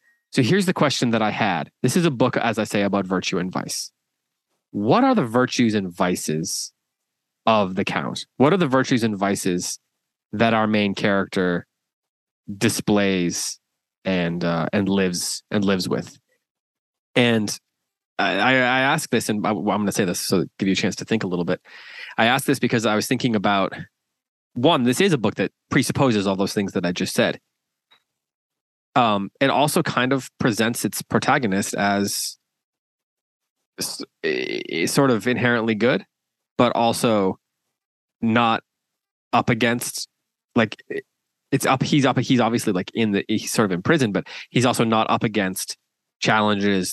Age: 20-39